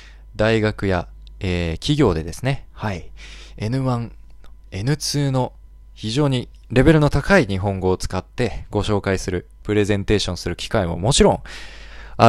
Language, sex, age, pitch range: Japanese, male, 20-39, 90-125 Hz